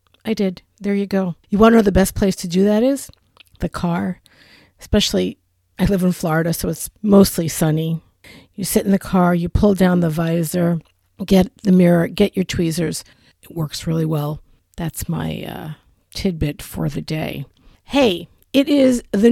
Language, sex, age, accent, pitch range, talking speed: English, female, 50-69, American, 160-215 Hz, 180 wpm